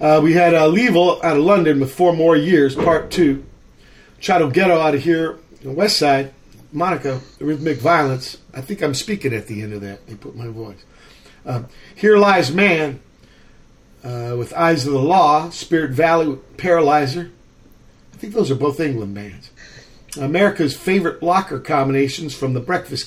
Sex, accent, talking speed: male, American, 170 wpm